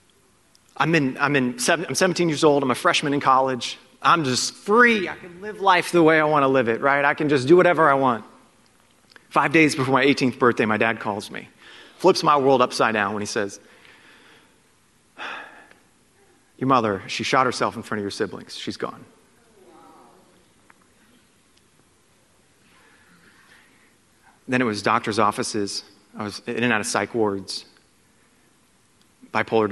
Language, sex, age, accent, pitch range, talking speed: English, male, 30-49, American, 110-140 Hz, 160 wpm